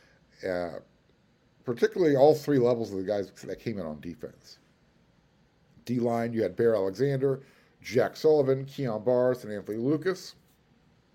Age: 50-69